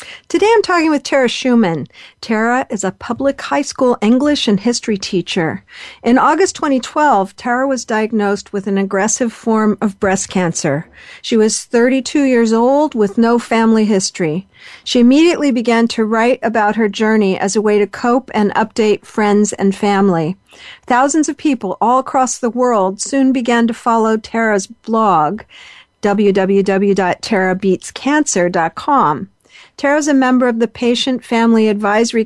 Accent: American